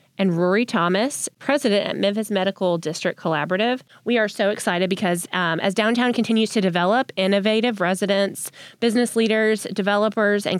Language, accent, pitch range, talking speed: English, American, 175-220 Hz, 145 wpm